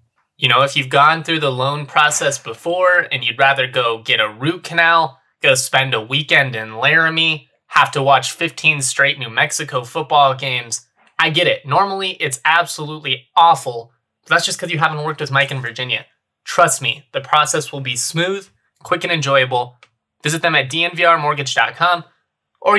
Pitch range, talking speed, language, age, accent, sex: 130-170 Hz, 170 wpm, English, 20-39, American, male